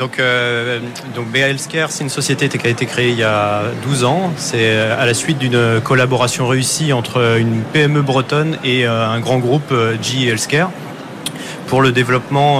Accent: French